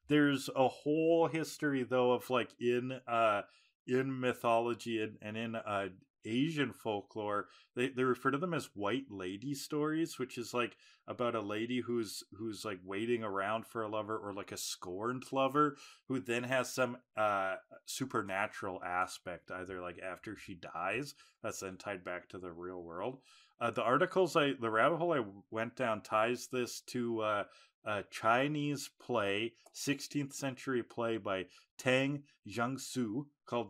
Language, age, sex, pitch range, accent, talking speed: English, 20-39, male, 105-130 Hz, American, 160 wpm